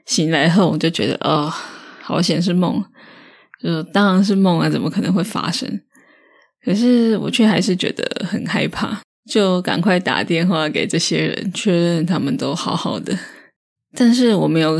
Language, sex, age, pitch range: Chinese, female, 20-39, 165-215 Hz